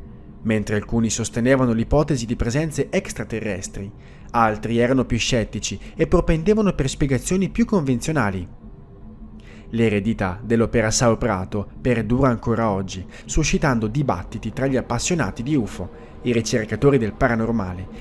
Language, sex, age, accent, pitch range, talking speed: Italian, male, 20-39, native, 105-135 Hz, 115 wpm